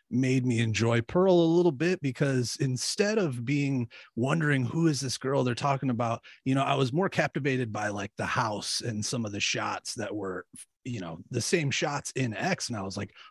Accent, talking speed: American, 210 wpm